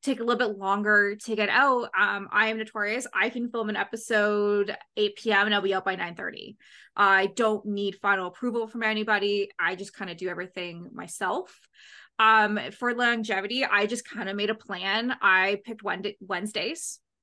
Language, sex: English, female